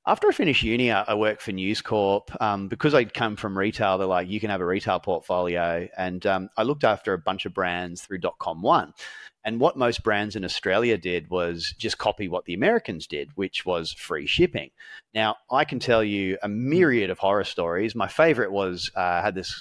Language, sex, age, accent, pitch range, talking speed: English, male, 30-49, Australian, 90-115 Hz, 210 wpm